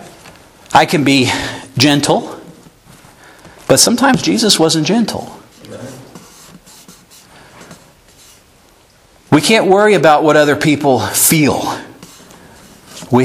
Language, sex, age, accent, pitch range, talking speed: English, male, 50-69, American, 115-150 Hz, 80 wpm